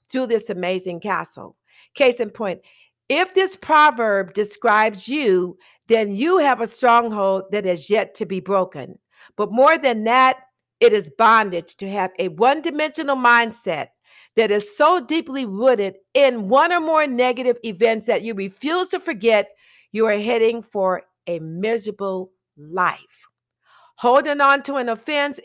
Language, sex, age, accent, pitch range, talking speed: English, female, 50-69, American, 200-270 Hz, 150 wpm